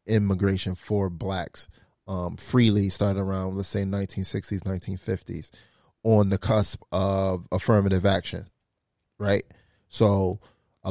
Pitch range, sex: 95-115 Hz, male